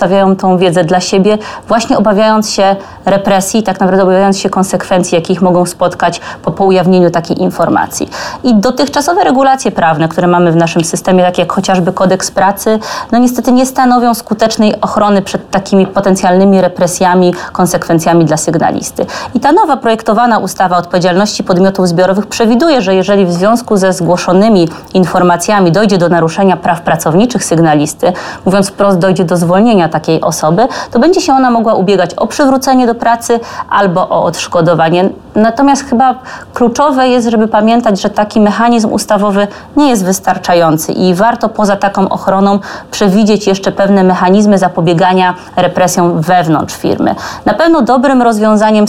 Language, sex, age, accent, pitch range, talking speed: Polish, female, 20-39, native, 180-225 Hz, 145 wpm